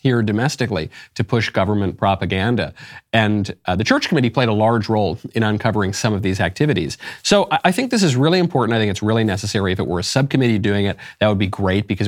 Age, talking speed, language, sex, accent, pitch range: 40-59, 230 wpm, English, male, American, 100-135 Hz